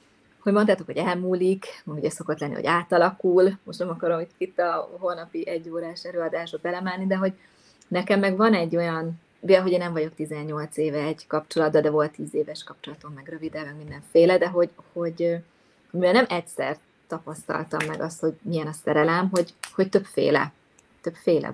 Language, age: Hungarian, 20-39